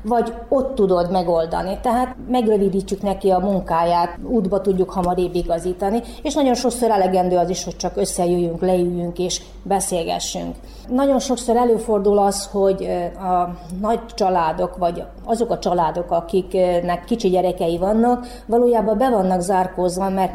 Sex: female